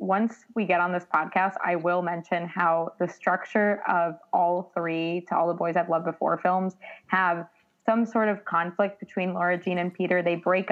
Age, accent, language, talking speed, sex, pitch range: 20-39, American, English, 195 wpm, female, 175-230 Hz